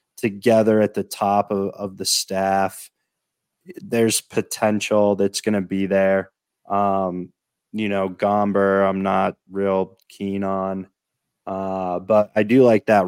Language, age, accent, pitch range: English, 20-39, American, 95-105 Hz